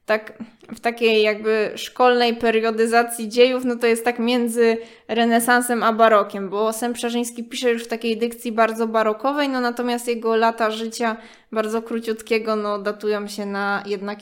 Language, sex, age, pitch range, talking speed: Polish, female, 20-39, 220-245 Hz, 155 wpm